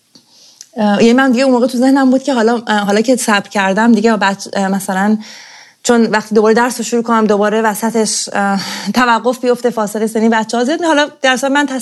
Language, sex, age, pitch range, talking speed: Persian, female, 30-49, 200-250 Hz, 185 wpm